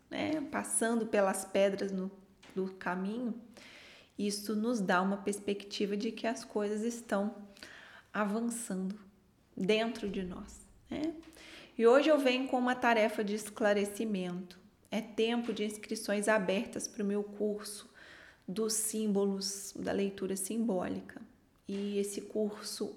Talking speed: 125 wpm